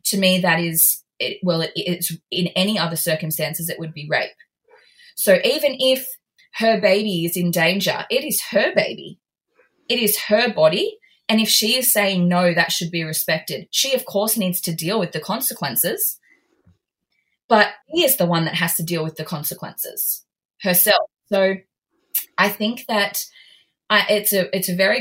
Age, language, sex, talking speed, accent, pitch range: 20-39, English, female, 170 wpm, Australian, 170-215 Hz